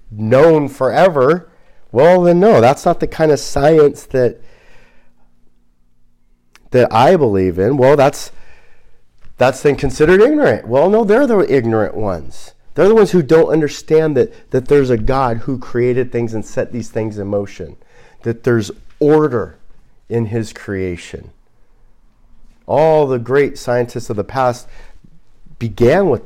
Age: 40-59